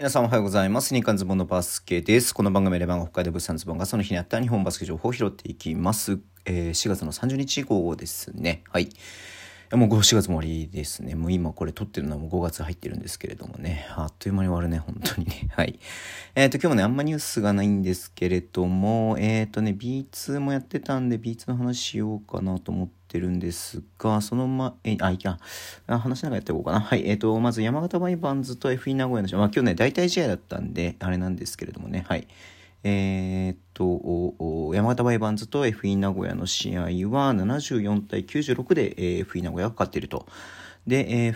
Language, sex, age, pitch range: Japanese, male, 40-59, 90-115 Hz